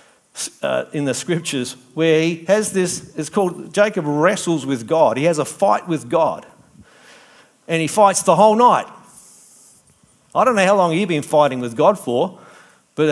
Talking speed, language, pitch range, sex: 180 wpm, English, 135-175 Hz, male